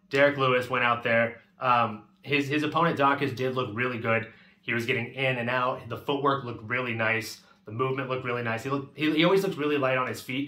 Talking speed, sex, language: 235 wpm, male, English